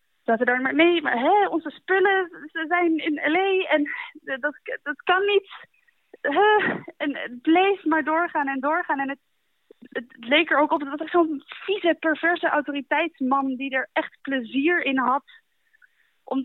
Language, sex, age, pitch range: Dutch, female, 20-39, 230-320 Hz